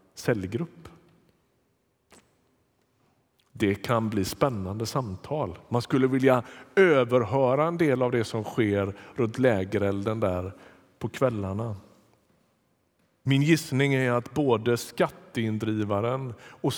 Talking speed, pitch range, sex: 100 wpm, 110-140 Hz, male